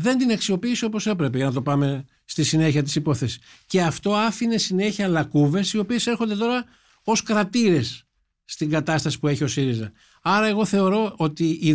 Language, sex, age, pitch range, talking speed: Greek, male, 60-79, 155-215 Hz, 180 wpm